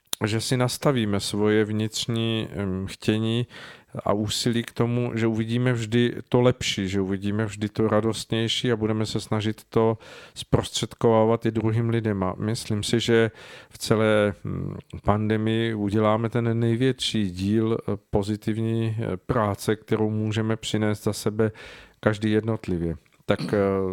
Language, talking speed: Czech, 125 wpm